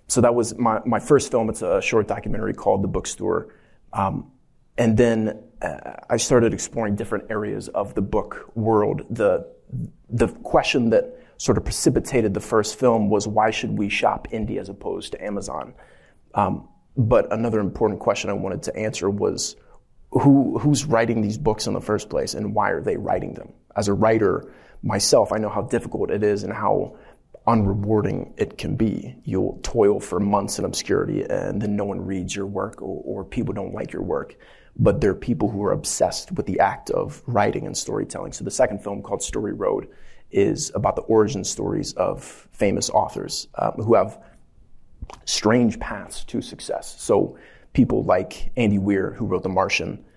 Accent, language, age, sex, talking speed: American, English, 30-49, male, 185 wpm